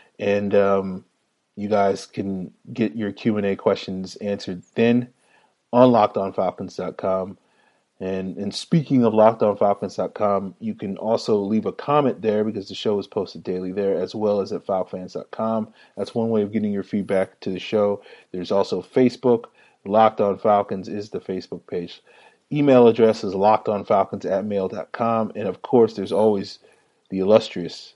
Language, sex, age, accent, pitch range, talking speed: English, male, 30-49, American, 100-120 Hz, 150 wpm